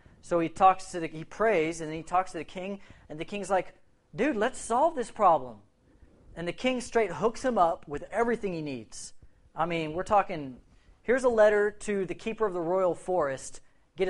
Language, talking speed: English, 210 wpm